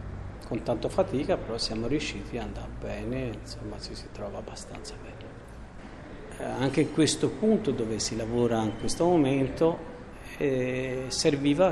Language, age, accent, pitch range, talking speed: Italian, 40-59, native, 110-140 Hz, 145 wpm